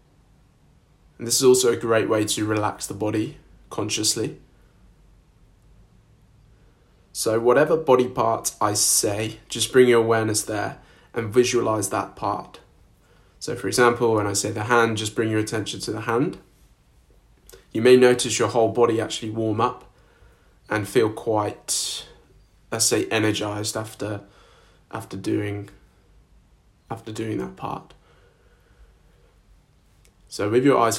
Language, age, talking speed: English, 20-39, 130 wpm